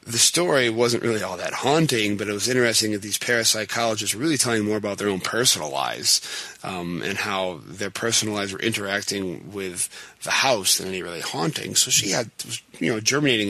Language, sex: English, male